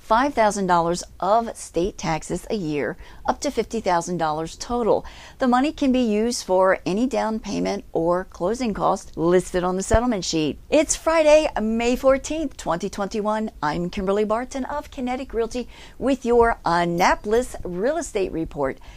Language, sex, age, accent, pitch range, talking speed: English, female, 50-69, American, 185-260 Hz, 135 wpm